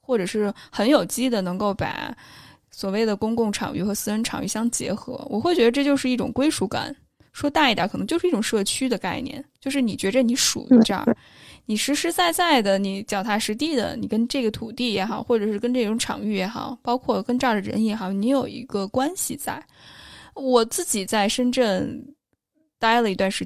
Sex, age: female, 10-29